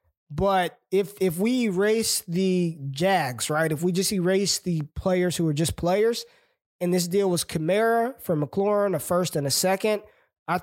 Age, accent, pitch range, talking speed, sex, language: 20-39, American, 155-200 Hz, 175 wpm, male, English